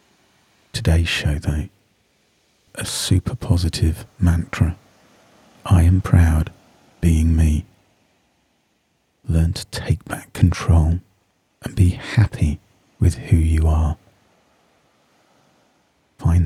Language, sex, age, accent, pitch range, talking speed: English, male, 40-59, British, 80-95 Hz, 90 wpm